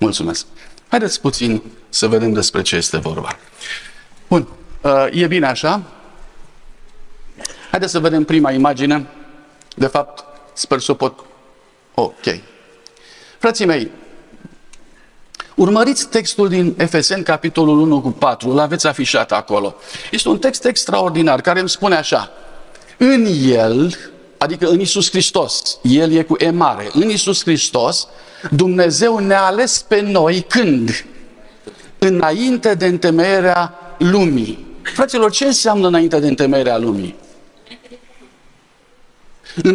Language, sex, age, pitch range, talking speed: Romanian, male, 50-69, 145-200 Hz, 115 wpm